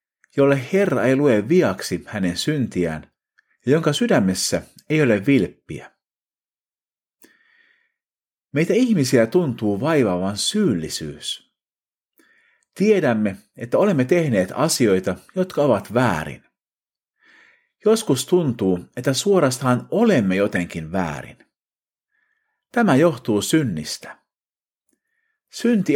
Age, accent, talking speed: 50-69, native, 85 wpm